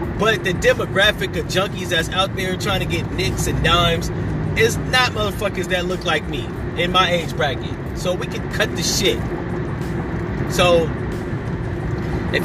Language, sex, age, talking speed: English, male, 30-49, 160 wpm